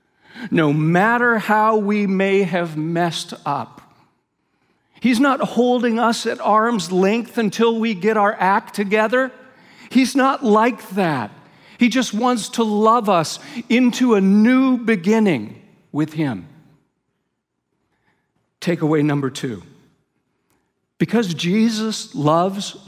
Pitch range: 175-225 Hz